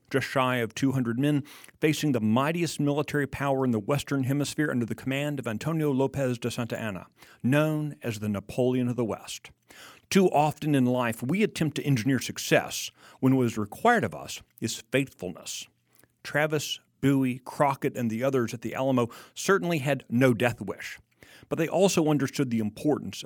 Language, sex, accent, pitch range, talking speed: English, male, American, 115-145 Hz, 175 wpm